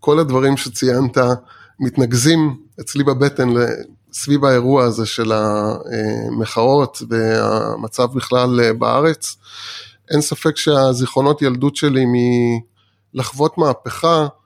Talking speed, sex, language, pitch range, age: 85 wpm, male, Hebrew, 125-155 Hz, 20-39